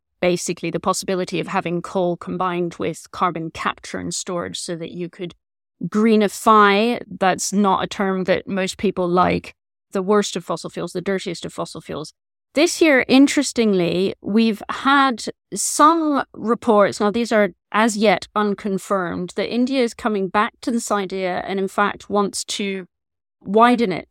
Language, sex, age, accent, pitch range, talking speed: English, female, 30-49, British, 180-215 Hz, 155 wpm